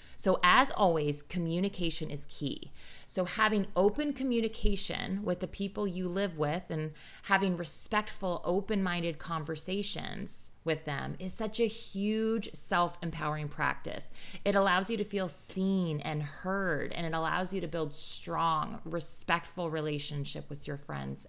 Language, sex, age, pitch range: English, female, 30-49, 160-205 Hz